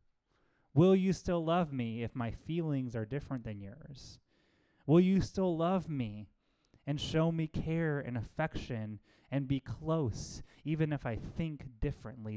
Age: 20-39